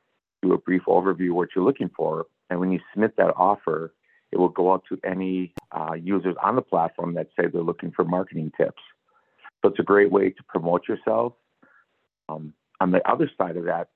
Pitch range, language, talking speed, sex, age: 85-95 Hz, English, 200 wpm, male, 50-69